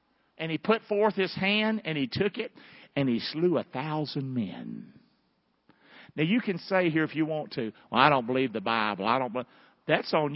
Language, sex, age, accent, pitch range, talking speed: English, male, 50-69, American, 155-200 Hz, 205 wpm